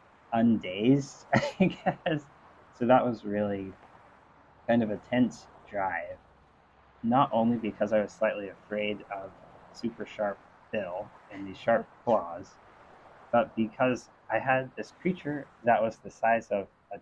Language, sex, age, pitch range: English, male, 20-39, 100-120 Hz